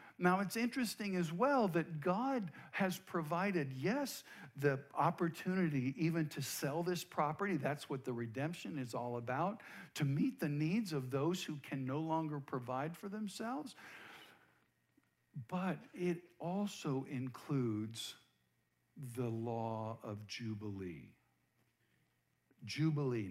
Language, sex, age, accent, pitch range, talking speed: English, male, 50-69, American, 130-185 Hz, 120 wpm